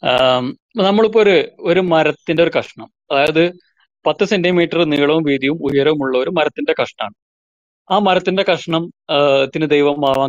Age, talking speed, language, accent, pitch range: 30-49, 115 wpm, Malayalam, native, 145-195 Hz